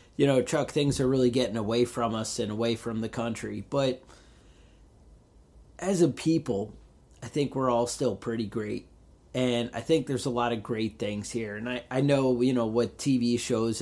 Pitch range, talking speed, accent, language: 115-130 Hz, 195 wpm, American, English